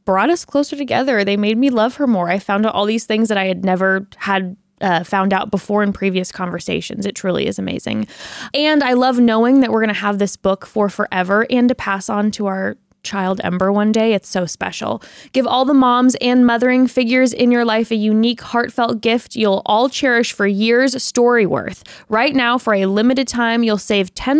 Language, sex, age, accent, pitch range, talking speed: English, female, 20-39, American, 200-250 Hz, 215 wpm